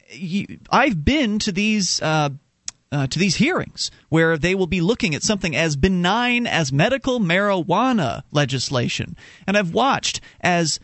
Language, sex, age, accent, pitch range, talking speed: English, male, 40-59, American, 135-200 Hz, 145 wpm